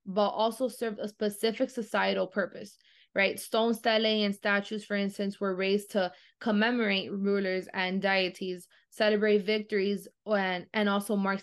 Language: English